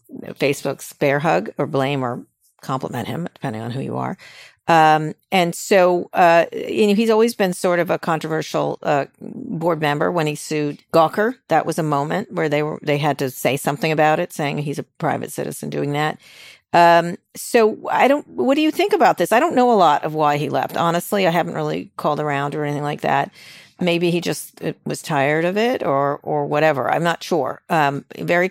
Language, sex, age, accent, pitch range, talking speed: English, female, 50-69, American, 130-170 Hz, 205 wpm